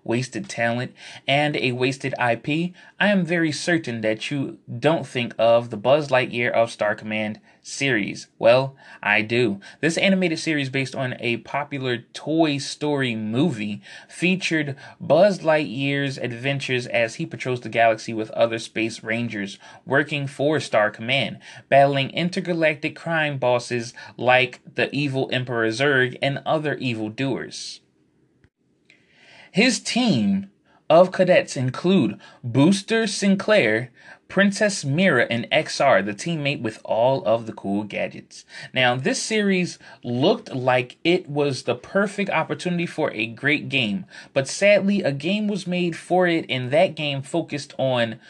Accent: American